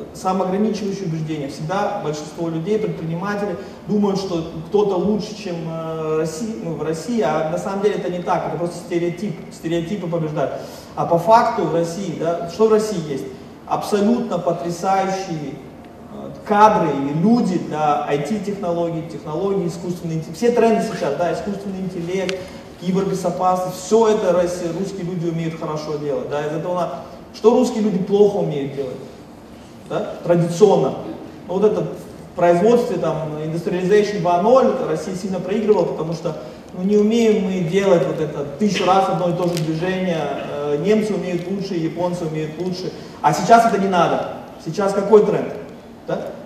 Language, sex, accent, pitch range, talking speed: Russian, male, native, 165-205 Hz, 145 wpm